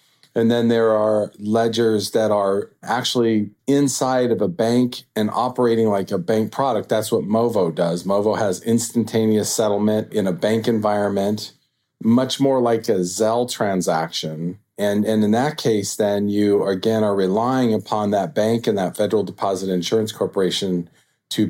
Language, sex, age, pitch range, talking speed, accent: English, male, 40-59, 100-120 Hz, 155 wpm, American